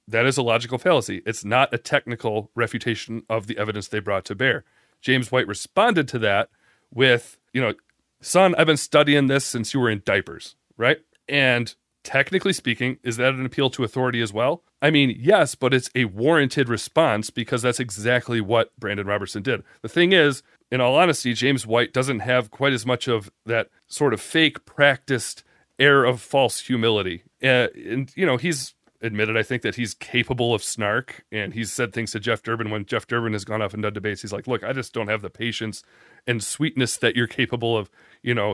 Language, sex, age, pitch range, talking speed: English, male, 30-49, 115-140 Hz, 205 wpm